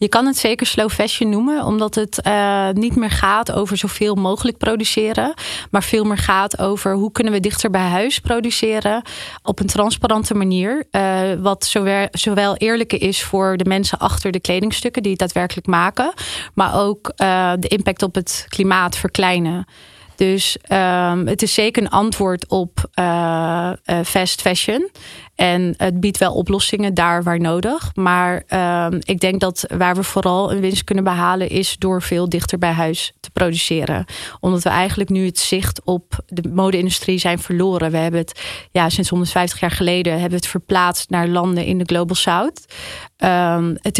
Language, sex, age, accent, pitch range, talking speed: Dutch, female, 30-49, Dutch, 180-205 Hz, 170 wpm